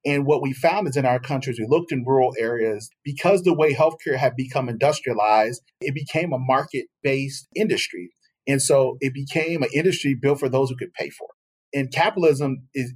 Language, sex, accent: English, male, American